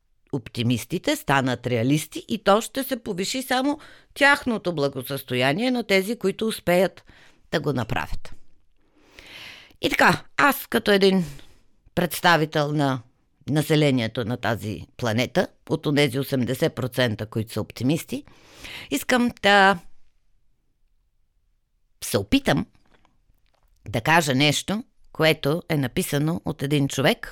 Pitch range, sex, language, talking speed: 120-195 Hz, female, Bulgarian, 105 wpm